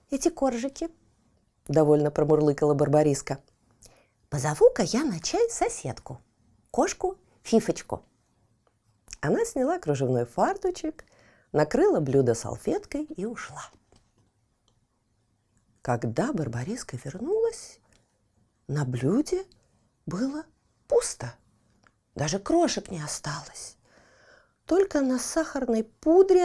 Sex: female